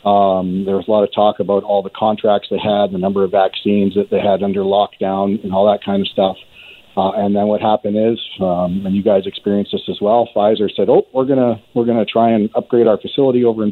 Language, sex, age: English, male, 40-59